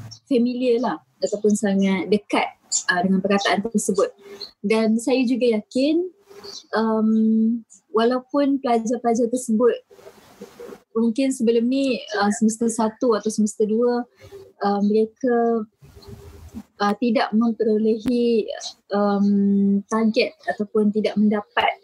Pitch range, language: 210-255 Hz, Malay